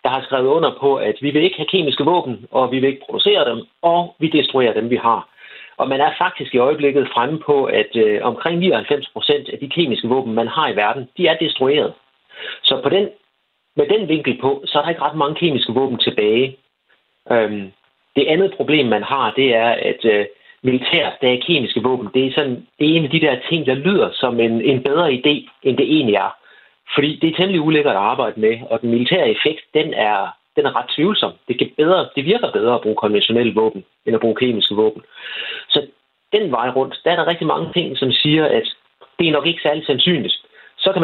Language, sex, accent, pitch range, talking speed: Danish, male, native, 120-160 Hz, 225 wpm